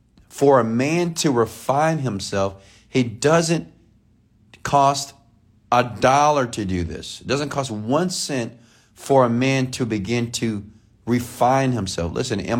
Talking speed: 140 wpm